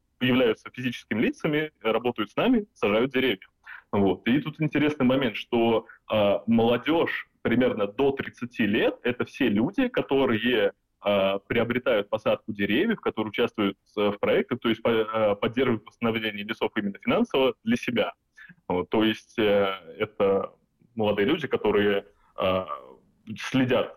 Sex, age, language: male, 20-39, Russian